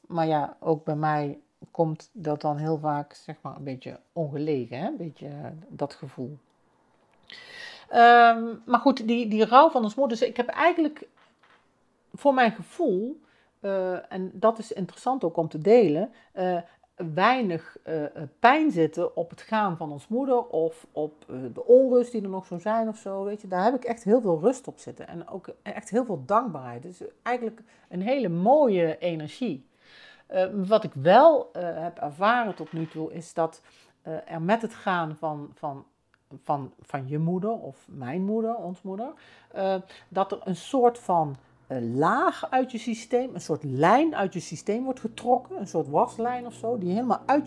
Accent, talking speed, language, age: Dutch, 185 wpm, Dutch, 40-59